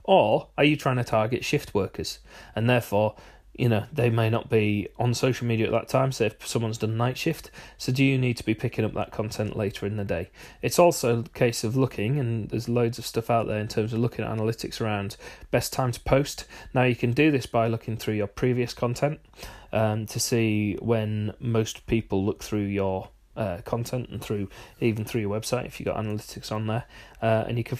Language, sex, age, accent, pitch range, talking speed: English, male, 30-49, British, 110-125 Hz, 225 wpm